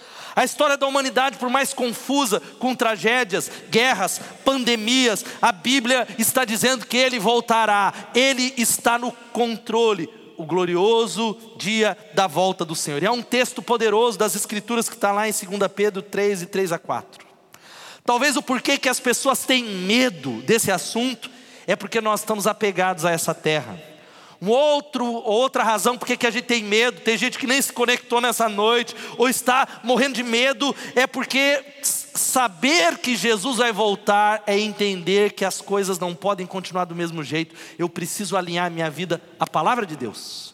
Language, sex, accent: Portuguese, male, Brazilian